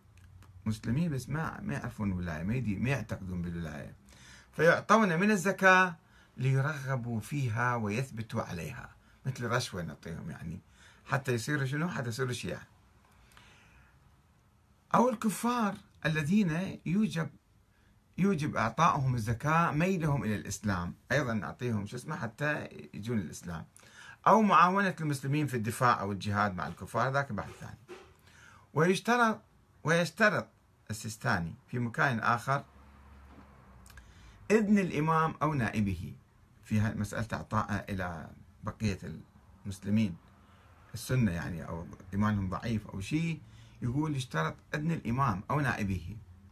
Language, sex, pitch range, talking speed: Arabic, male, 100-145 Hz, 110 wpm